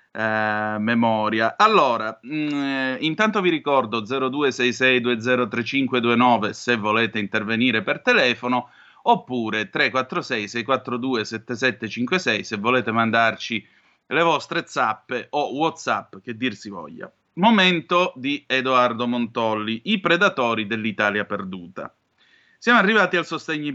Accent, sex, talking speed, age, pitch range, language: native, male, 100 wpm, 30-49, 115-165 Hz, Italian